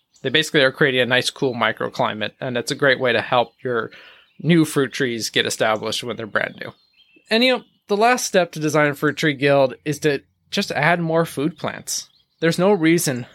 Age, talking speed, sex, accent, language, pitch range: 20-39, 210 wpm, male, American, English, 125-170 Hz